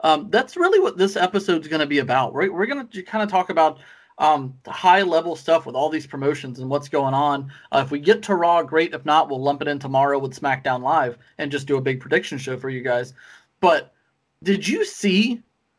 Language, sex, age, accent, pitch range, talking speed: English, male, 30-49, American, 140-180 Hz, 235 wpm